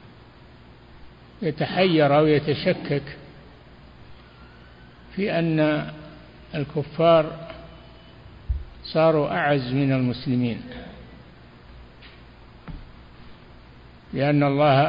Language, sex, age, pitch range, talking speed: Arabic, male, 60-79, 120-150 Hz, 45 wpm